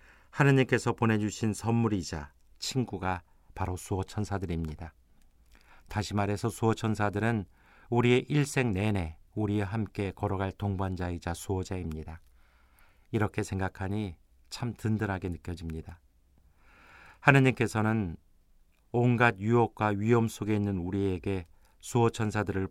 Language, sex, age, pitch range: Korean, male, 50-69, 85-110 Hz